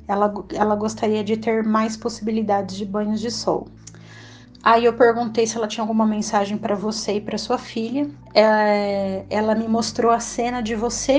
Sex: female